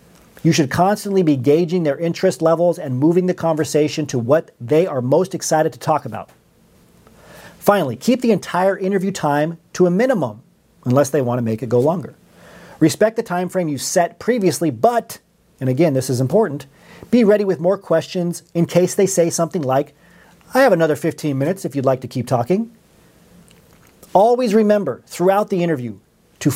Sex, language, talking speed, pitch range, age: male, English, 180 wpm, 150-190 Hz, 40-59